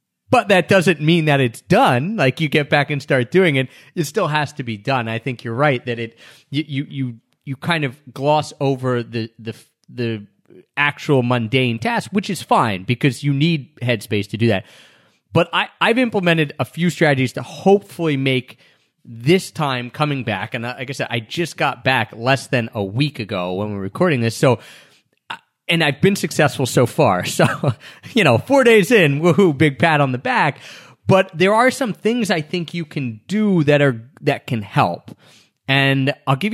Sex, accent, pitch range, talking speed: male, American, 120-155 Hz, 195 wpm